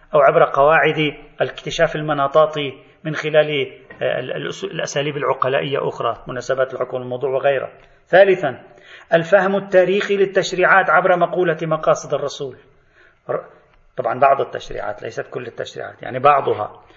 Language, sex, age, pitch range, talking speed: Arabic, male, 40-59, 150-205 Hz, 105 wpm